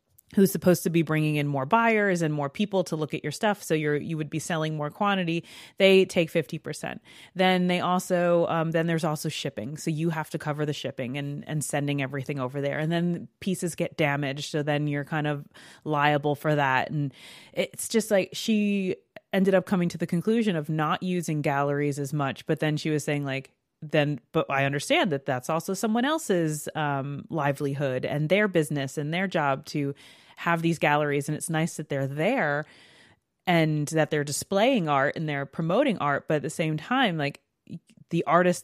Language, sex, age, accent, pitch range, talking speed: English, female, 30-49, American, 150-180 Hz, 200 wpm